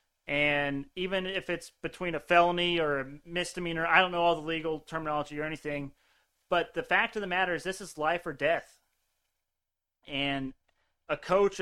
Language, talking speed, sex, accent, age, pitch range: English, 175 wpm, male, American, 30-49, 145-190 Hz